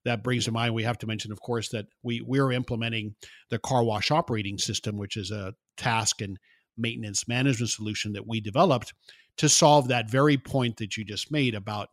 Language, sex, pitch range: English, male, 115-145 Hz